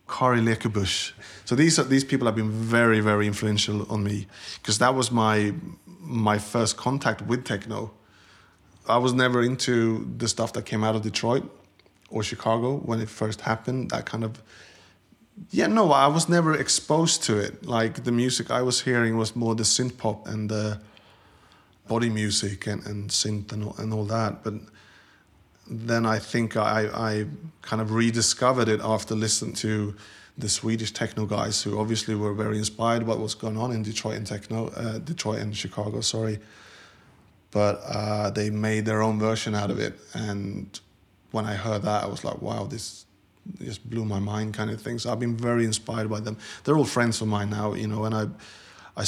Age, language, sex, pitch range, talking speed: 30-49, English, male, 105-115 Hz, 190 wpm